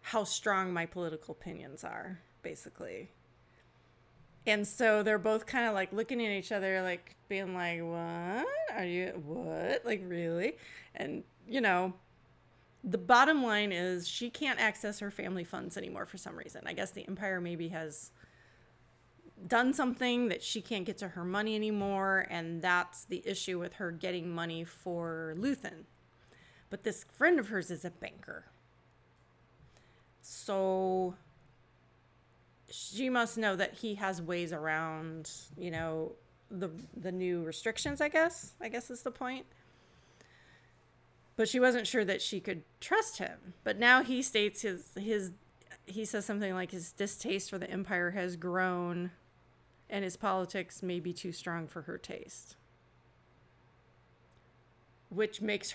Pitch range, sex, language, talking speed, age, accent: 175-220 Hz, female, English, 150 wpm, 30-49, American